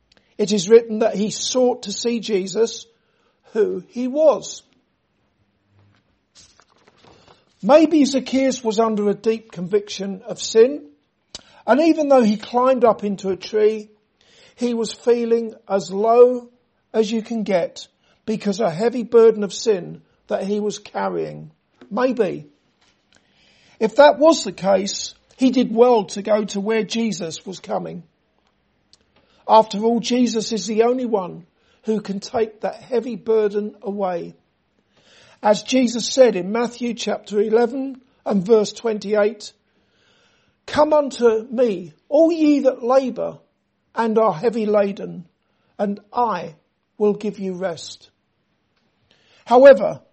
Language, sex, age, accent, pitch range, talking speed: English, male, 50-69, British, 200-245 Hz, 130 wpm